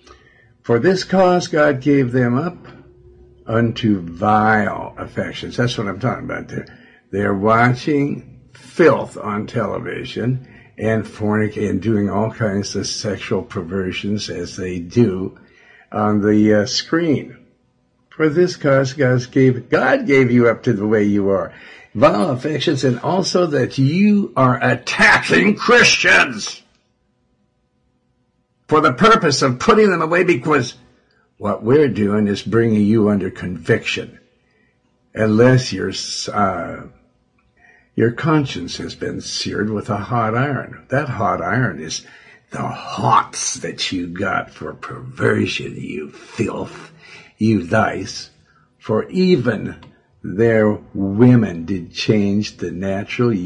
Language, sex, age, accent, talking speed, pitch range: English, male, 60-79, American, 125 wpm, 100-130 Hz